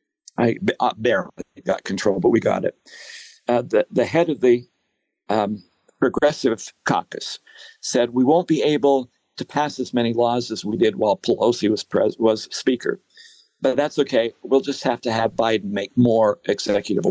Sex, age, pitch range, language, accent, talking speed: male, 60-79, 120-150 Hz, English, American, 170 wpm